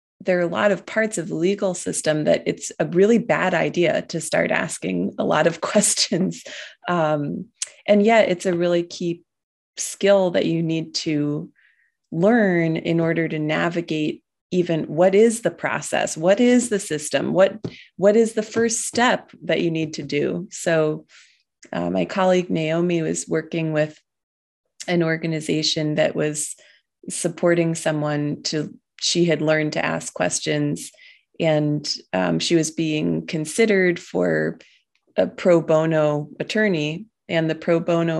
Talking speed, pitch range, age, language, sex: 150 wpm, 155-190 Hz, 30-49, English, female